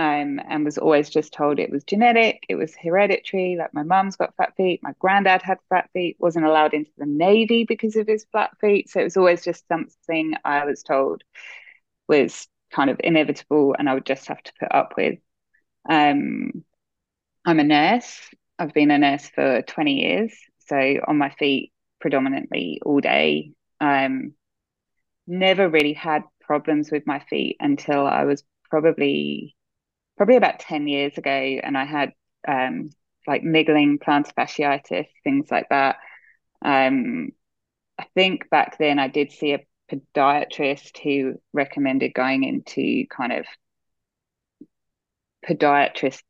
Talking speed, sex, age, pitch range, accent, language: 155 wpm, female, 20-39, 140-185 Hz, British, English